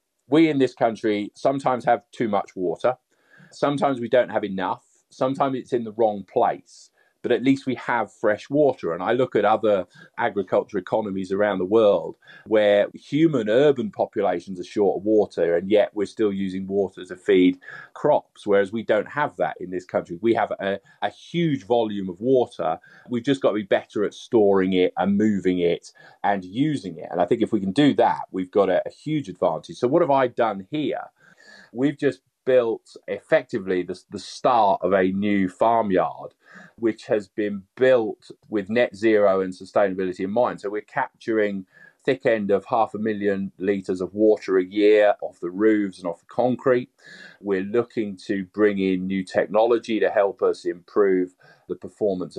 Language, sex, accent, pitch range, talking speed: English, male, British, 95-125 Hz, 185 wpm